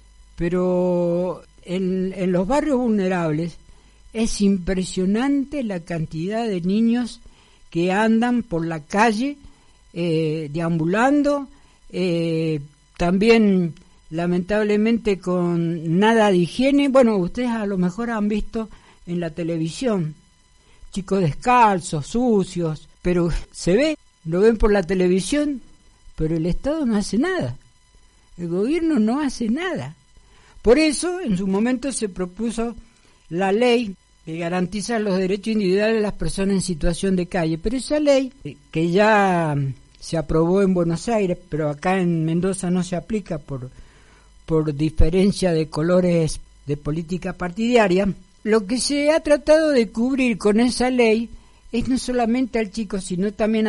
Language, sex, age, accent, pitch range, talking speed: Spanish, female, 60-79, Argentinian, 170-230 Hz, 135 wpm